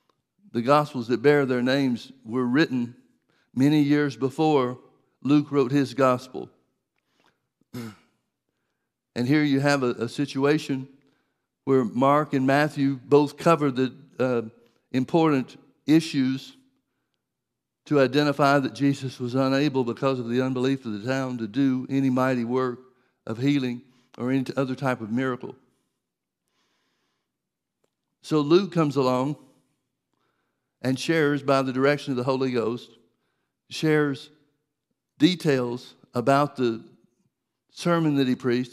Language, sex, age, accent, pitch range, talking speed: English, male, 60-79, American, 125-145 Hz, 120 wpm